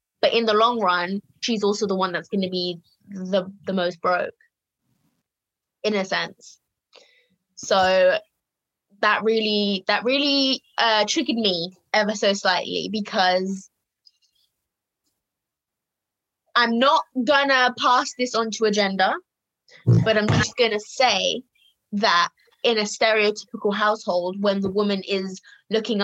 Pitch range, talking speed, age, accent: 195-235 Hz, 120 wpm, 20-39, British